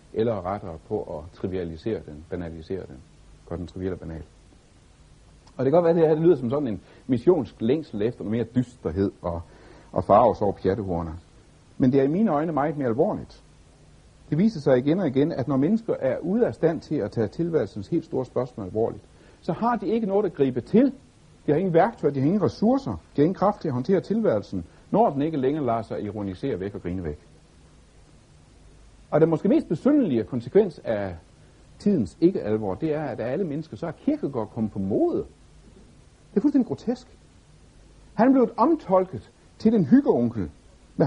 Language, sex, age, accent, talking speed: Danish, male, 60-79, native, 195 wpm